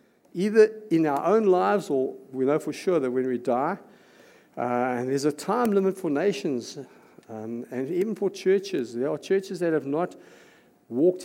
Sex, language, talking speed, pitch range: male, English, 180 wpm, 130-180 Hz